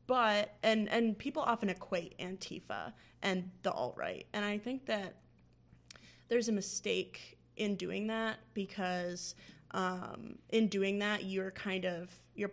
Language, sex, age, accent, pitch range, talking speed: English, female, 20-39, American, 180-195 Hz, 140 wpm